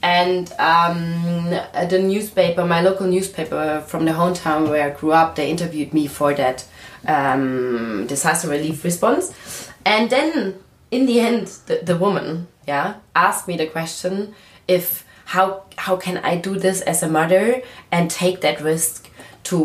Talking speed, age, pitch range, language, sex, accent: 155 wpm, 20-39, 140-180 Hz, English, female, German